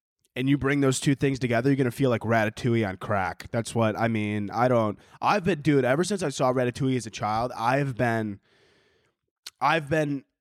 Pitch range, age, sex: 120-150 Hz, 20-39, male